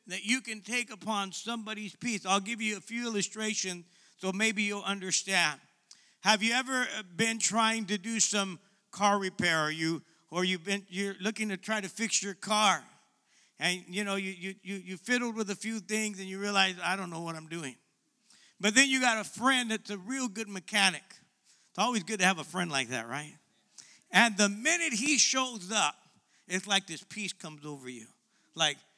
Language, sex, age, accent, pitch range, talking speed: English, male, 50-69, American, 180-220 Hz, 195 wpm